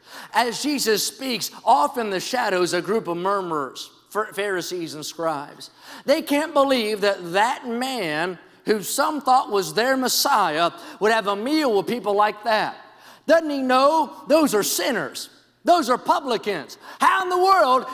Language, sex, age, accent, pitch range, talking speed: English, male, 40-59, American, 185-260 Hz, 155 wpm